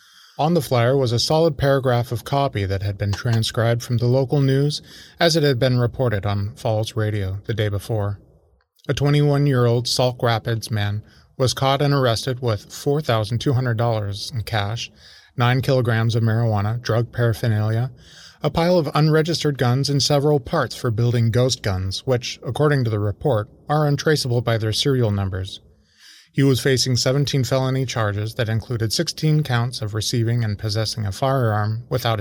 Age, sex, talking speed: 20-39, male, 160 wpm